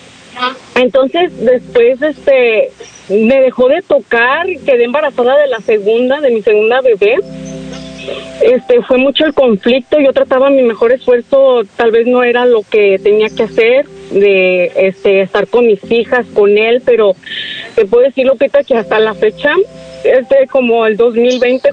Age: 30-49